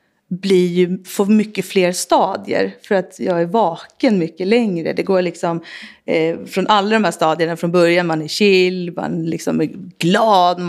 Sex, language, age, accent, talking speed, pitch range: female, Swedish, 30-49, native, 180 wpm, 170-200 Hz